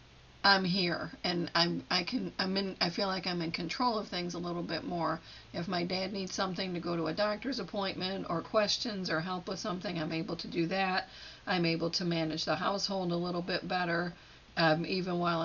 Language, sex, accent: English, female, American